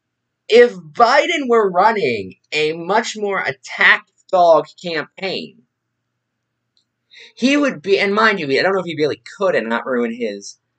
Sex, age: male, 20-39